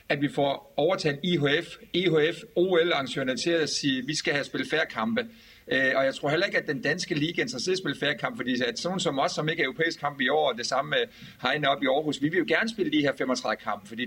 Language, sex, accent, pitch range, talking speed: Danish, male, native, 155-190 Hz, 255 wpm